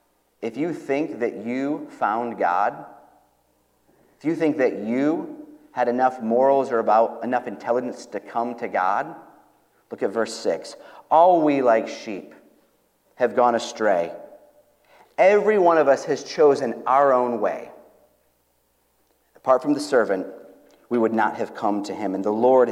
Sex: male